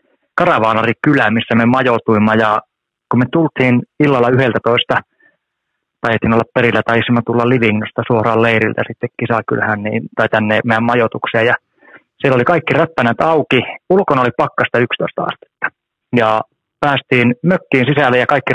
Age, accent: 30-49, native